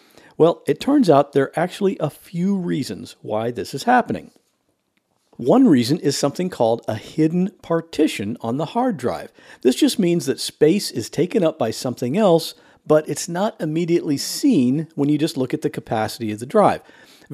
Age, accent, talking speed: 50-69, American, 185 wpm